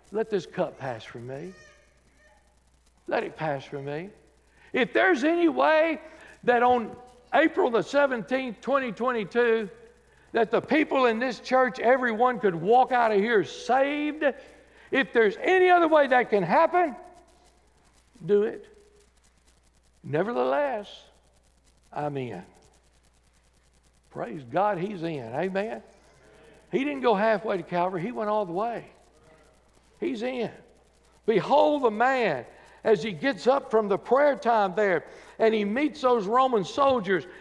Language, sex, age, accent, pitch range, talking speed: English, male, 60-79, American, 200-290 Hz, 135 wpm